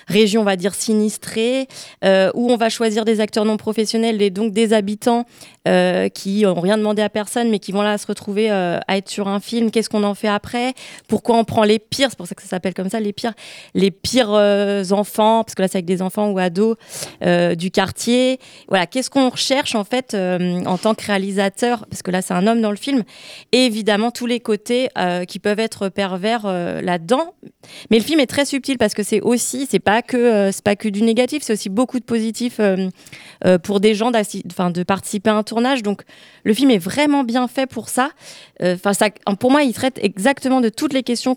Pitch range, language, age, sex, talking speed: 200-235 Hz, French, 30-49, female, 230 wpm